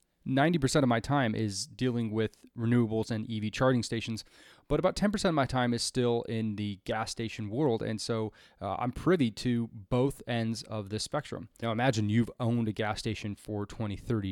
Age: 20-39